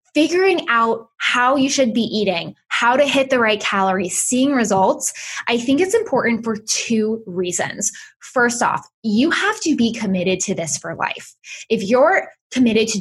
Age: 10-29